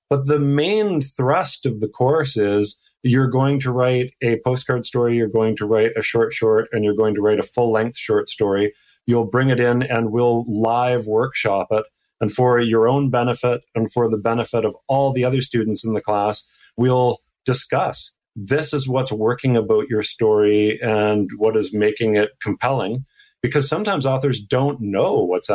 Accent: American